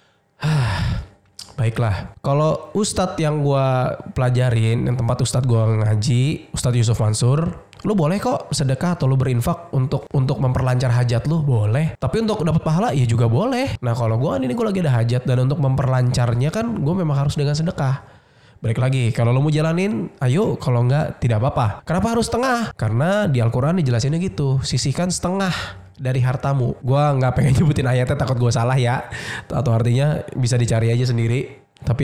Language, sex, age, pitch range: Indonesian, male, 20-39, 120-155 Hz